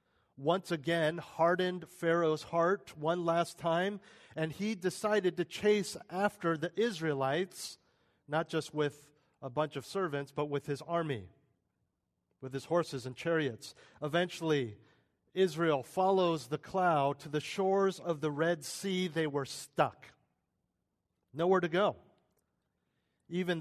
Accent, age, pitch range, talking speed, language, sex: American, 40-59, 150-180 Hz, 130 wpm, English, male